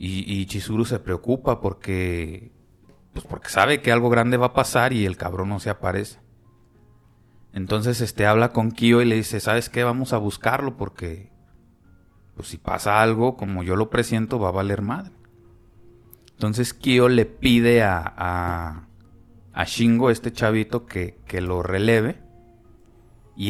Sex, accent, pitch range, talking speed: male, Mexican, 95-115 Hz, 155 wpm